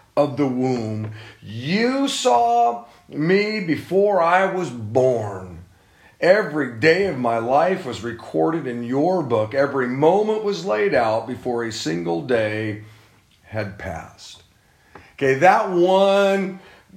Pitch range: 120-155 Hz